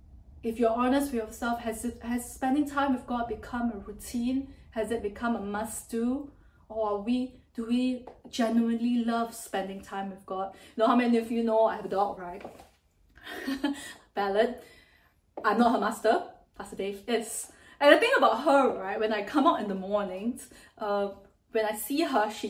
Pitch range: 215-270 Hz